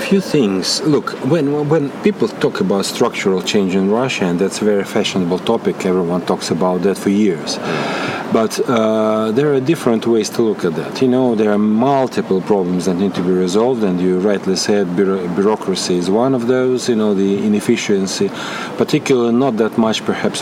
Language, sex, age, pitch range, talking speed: English, male, 40-59, 95-120 Hz, 190 wpm